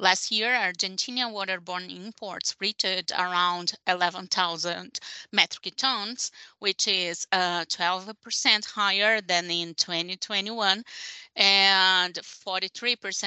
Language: English